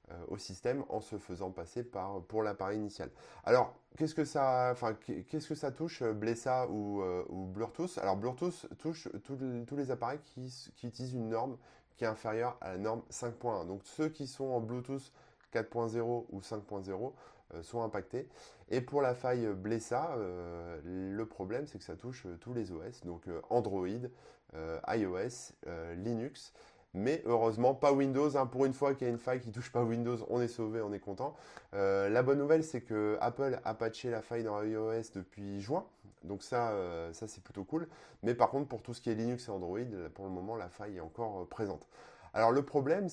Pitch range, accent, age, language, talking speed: 100-130 Hz, French, 20-39, French, 200 wpm